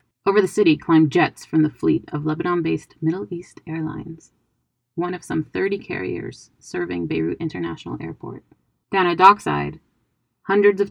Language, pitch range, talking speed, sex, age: English, 145-170 Hz, 150 wpm, female, 20-39